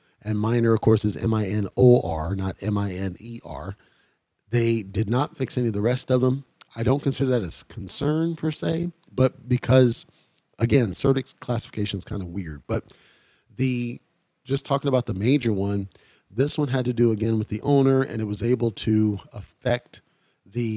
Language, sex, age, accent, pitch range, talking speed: English, male, 40-59, American, 105-125 Hz, 170 wpm